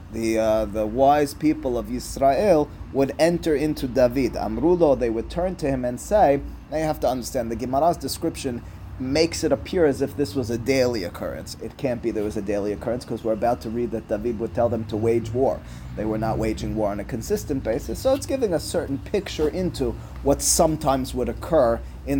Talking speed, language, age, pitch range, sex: 215 wpm, English, 30-49, 115-150 Hz, male